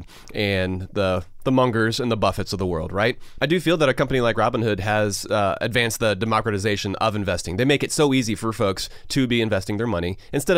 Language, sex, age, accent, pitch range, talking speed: English, male, 30-49, American, 100-130 Hz, 220 wpm